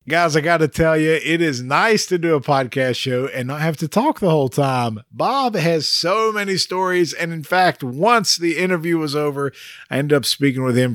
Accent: American